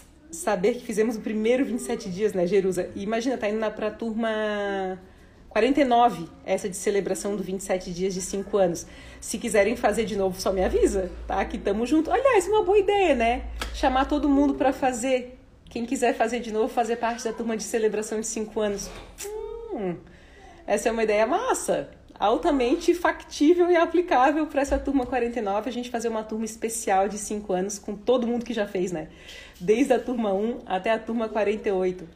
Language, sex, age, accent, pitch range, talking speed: Portuguese, female, 40-59, Brazilian, 195-255 Hz, 190 wpm